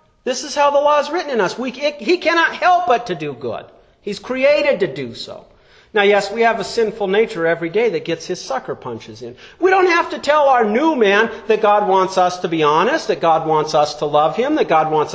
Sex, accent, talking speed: male, American, 240 wpm